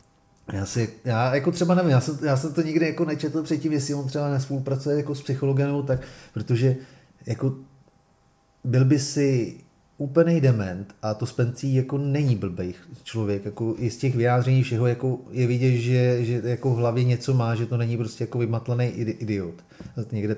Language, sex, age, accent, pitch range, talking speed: Czech, male, 30-49, native, 120-135 Hz, 185 wpm